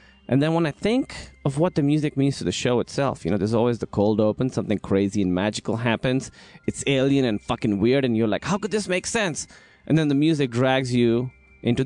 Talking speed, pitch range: 235 wpm, 110-155 Hz